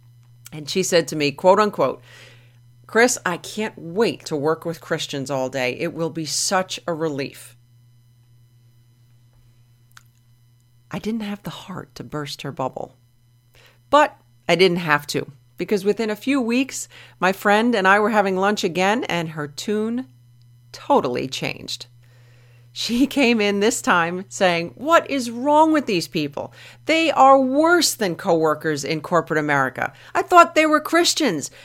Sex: female